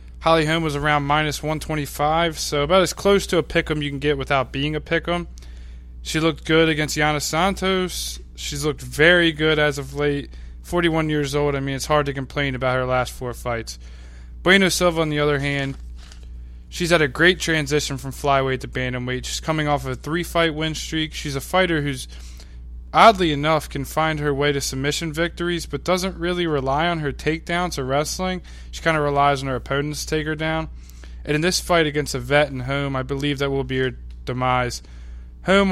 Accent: American